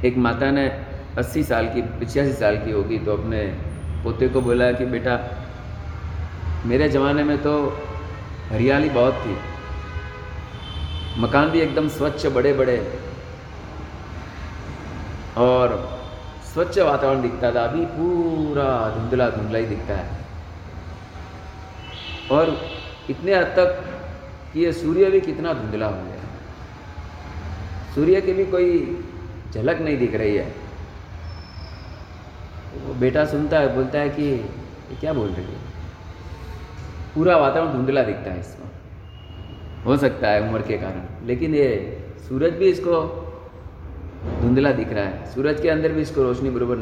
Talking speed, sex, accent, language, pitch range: 135 wpm, male, native, Hindi, 90-135 Hz